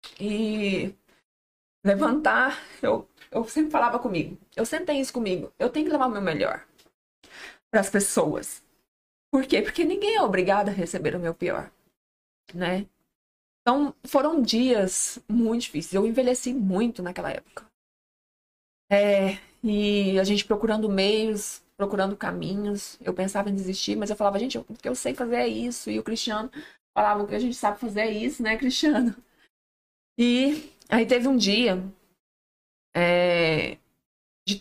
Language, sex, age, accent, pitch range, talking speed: Portuguese, female, 20-39, Brazilian, 185-240 Hz, 150 wpm